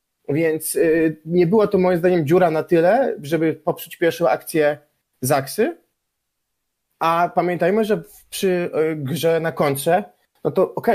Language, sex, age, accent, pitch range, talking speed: Polish, male, 20-39, native, 135-165 Hz, 130 wpm